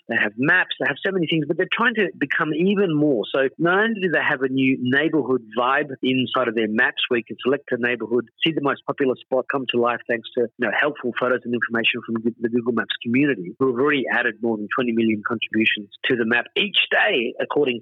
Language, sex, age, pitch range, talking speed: English, male, 40-59, 115-145 Hz, 240 wpm